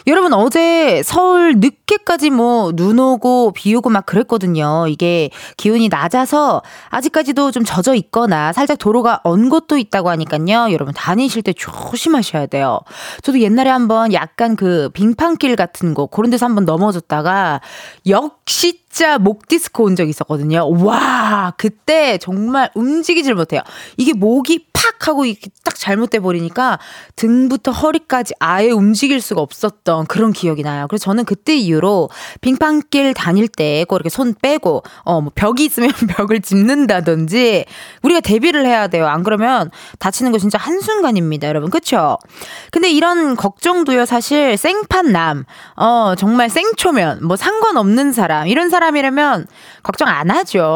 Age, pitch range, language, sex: 20-39, 185-280 Hz, Korean, female